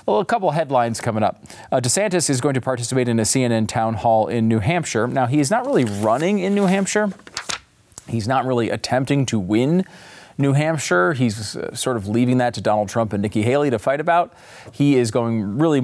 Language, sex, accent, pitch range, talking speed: English, male, American, 105-140 Hz, 210 wpm